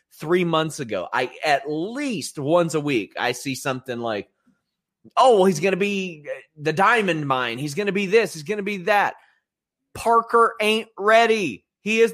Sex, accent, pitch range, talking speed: male, American, 135-190 Hz, 165 wpm